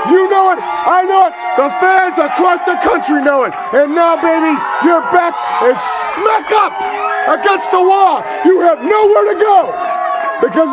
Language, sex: English, male